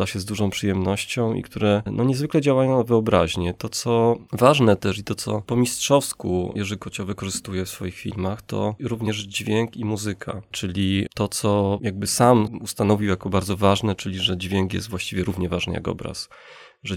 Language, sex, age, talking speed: Polish, male, 30-49, 175 wpm